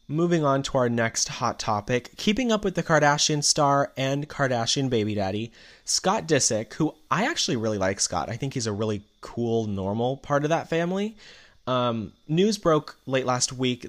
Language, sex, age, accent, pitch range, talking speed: English, male, 20-39, American, 110-135 Hz, 180 wpm